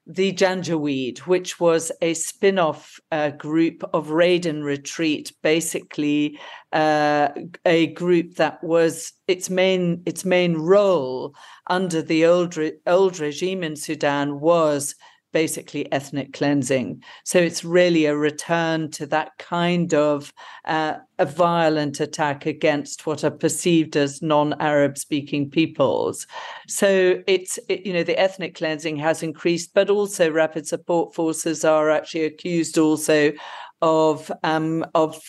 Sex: female